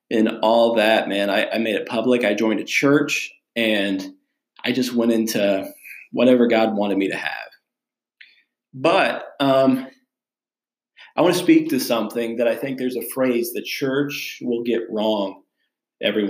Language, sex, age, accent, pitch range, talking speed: English, male, 40-59, American, 110-140 Hz, 160 wpm